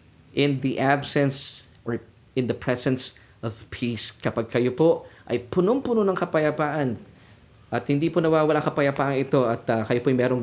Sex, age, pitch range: male, 20-39, 115-145 Hz